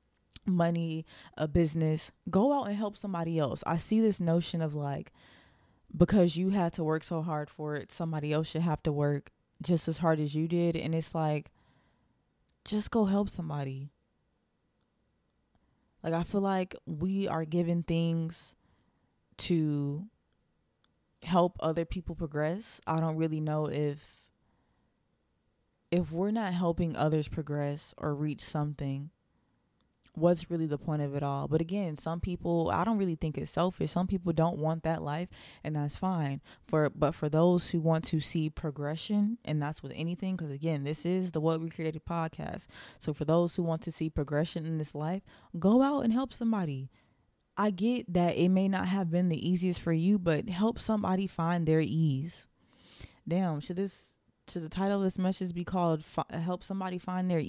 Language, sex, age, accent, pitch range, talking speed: English, female, 20-39, American, 155-180 Hz, 175 wpm